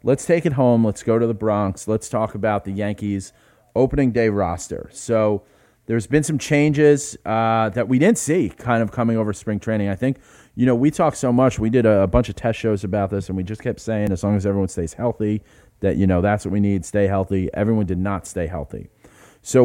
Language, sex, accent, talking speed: English, male, American, 230 wpm